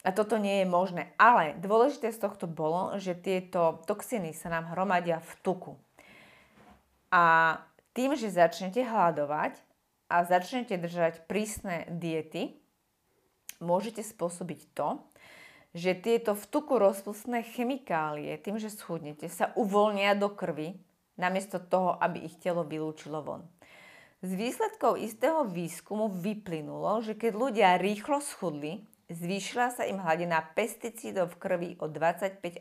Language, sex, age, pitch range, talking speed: Slovak, female, 30-49, 170-215 Hz, 130 wpm